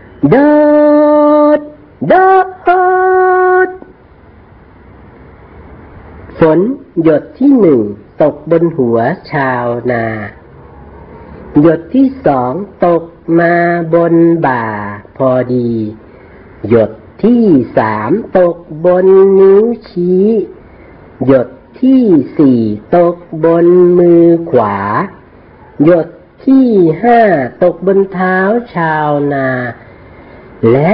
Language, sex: Thai, female